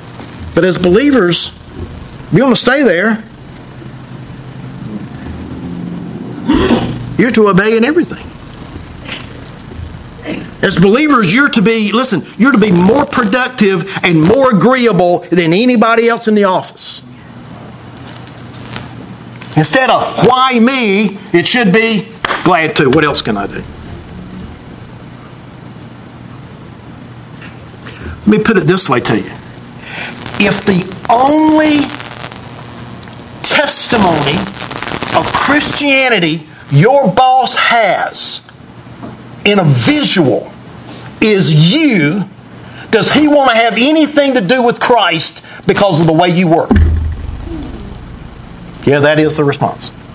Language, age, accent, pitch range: English, 50-69, American, 160-250 Hz